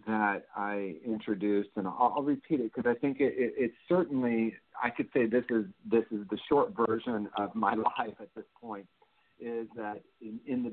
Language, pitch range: English, 100-115 Hz